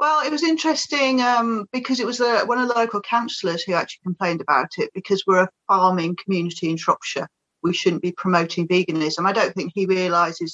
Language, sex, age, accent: English, female, 40-59, British